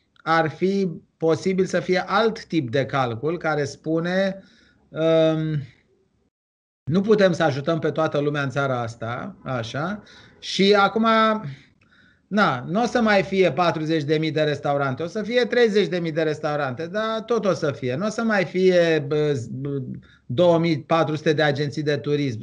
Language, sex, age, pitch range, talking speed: Romanian, male, 30-49, 150-195 Hz, 145 wpm